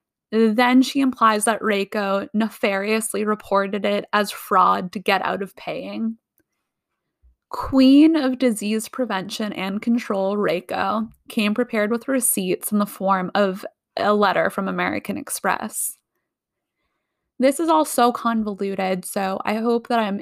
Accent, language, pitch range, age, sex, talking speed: American, English, 200-245 Hz, 20-39, female, 135 wpm